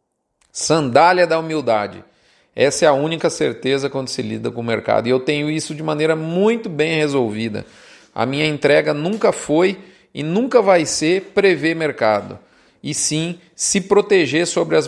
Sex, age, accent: male, 40-59, Brazilian